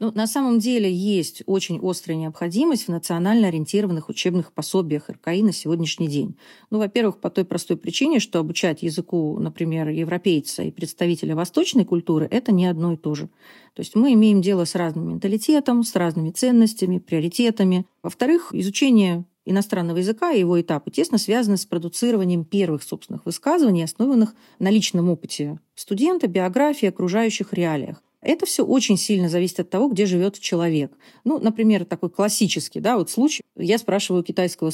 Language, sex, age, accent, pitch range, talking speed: Russian, female, 40-59, native, 170-230 Hz, 160 wpm